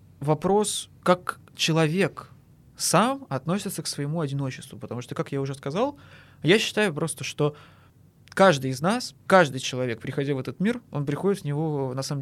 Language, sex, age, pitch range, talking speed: Russian, male, 20-39, 135-175 Hz, 160 wpm